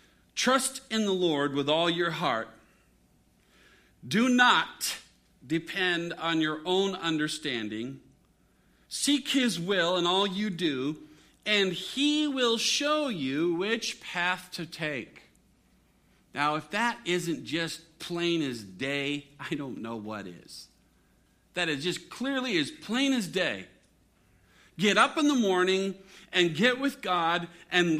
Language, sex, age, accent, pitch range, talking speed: English, male, 50-69, American, 165-250 Hz, 135 wpm